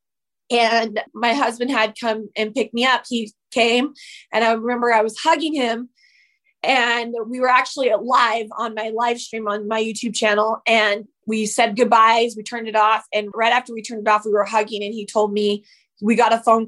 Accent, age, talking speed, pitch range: American, 20-39, 205 wpm, 220-270 Hz